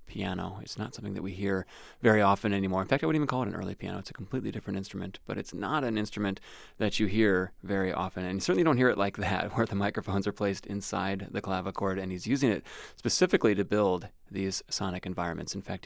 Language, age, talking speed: English, 30-49, 240 wpm